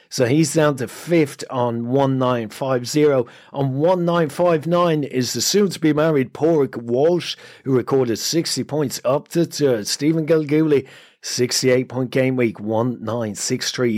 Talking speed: 135 wpm